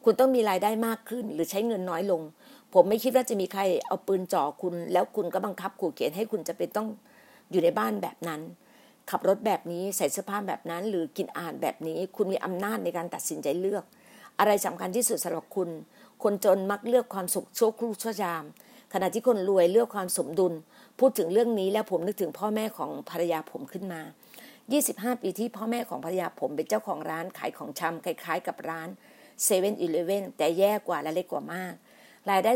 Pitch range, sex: 180-230 Hz, female